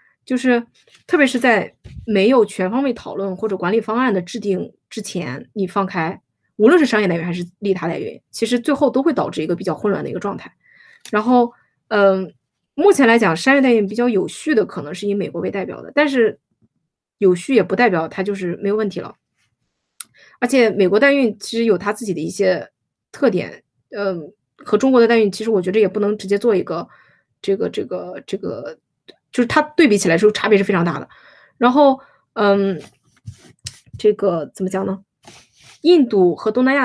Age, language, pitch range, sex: 20-39, Chinese, 190-245 Hz, female